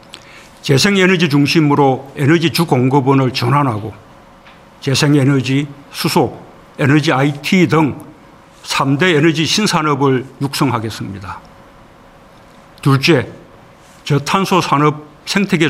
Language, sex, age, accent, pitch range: Korean, male, 60-79, native, 130-160 Hz